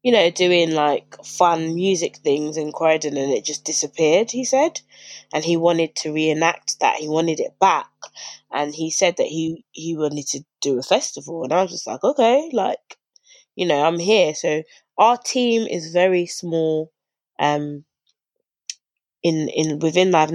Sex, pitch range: female, 155-175 Hz